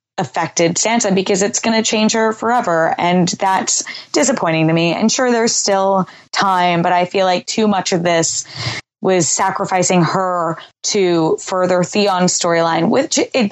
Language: English